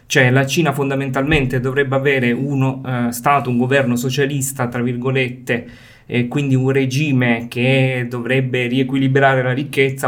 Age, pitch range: 20-39, 125-140 Hz